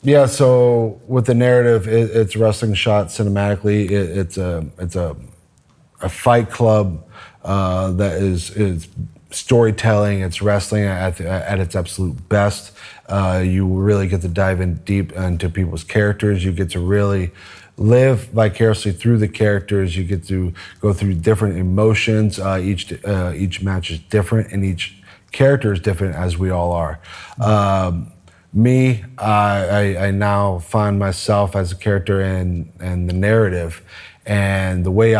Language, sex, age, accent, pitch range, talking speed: English, male, 30-49, American, 90-105 Hz, 155 wpm